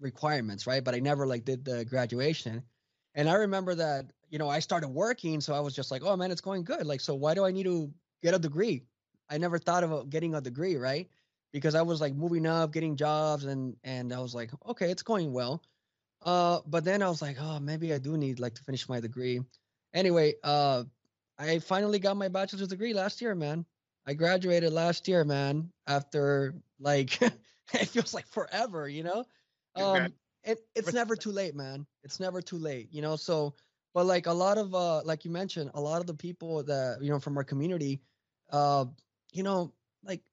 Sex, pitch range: male, 140-180 Hz